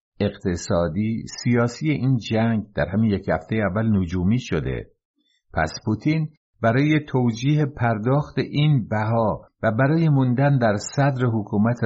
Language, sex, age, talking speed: Persian, male, 60-79, 120 wpm